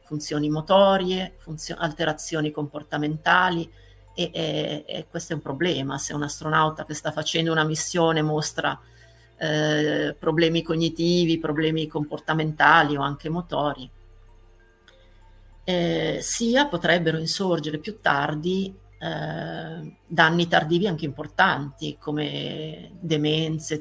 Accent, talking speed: native, 105 wpm